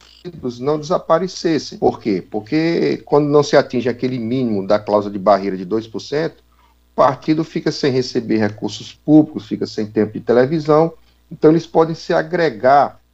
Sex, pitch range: male, 100-145 Hz